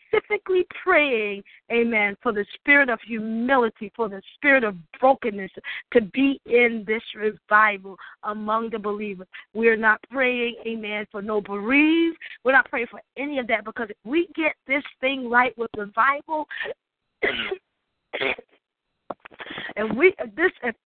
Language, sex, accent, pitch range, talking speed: English, female, American, 225-300 Hz, 145 wpm